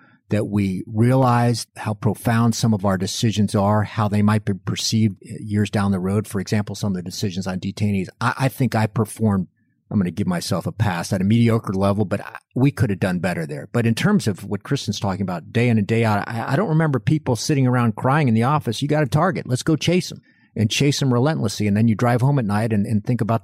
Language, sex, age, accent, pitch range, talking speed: English, male, 50-69, American, 100-125 Hz, 250 wpm